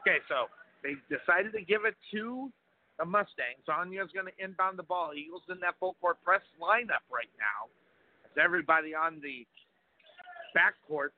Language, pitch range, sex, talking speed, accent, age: English, 165-220 Hz, male, 155 wpm, American, 50-69